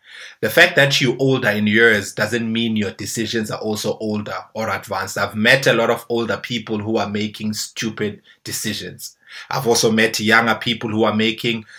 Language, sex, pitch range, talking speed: English, male, 105-125 Hz, 185 wpm